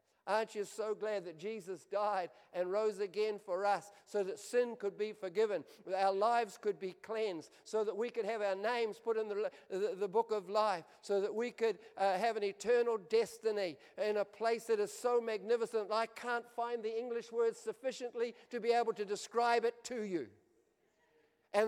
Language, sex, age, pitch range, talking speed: English, male, 50-69, 195-230 Hz, 200 wpm